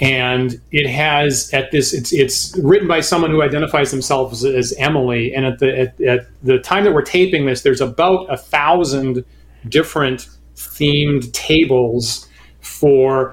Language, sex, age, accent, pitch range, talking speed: English, male, 30-49, American, 130-155 Hz, 160 wpm